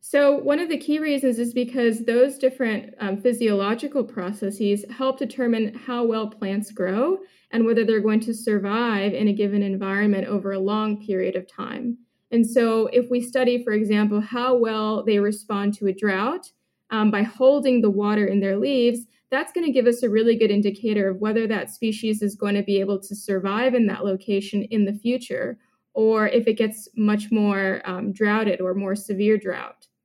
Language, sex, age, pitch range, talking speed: English, female, 20-39, 205-250 Hz, 190 wpm